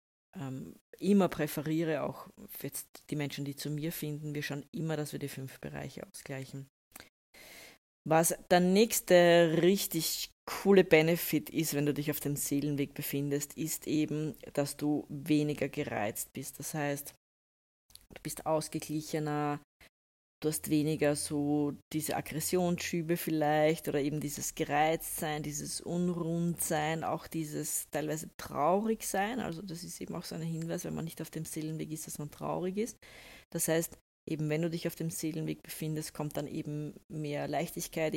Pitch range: 145-165 Hz